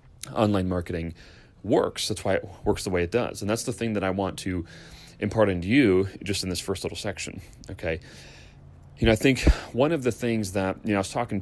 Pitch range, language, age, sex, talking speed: 90-110 Hz, English, 30-49, male, 225 wpm